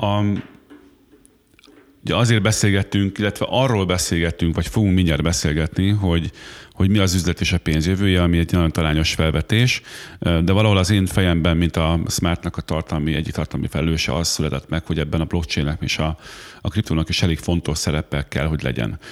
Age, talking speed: 40-59, 170 wpm